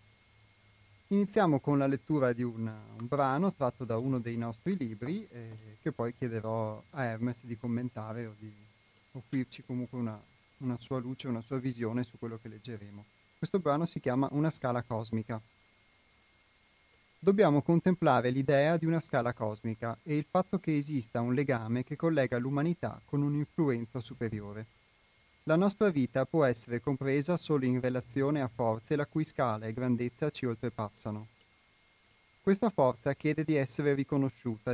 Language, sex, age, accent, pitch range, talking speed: Italian, male, 30-49, native, 115-145 Hz, 150 wpm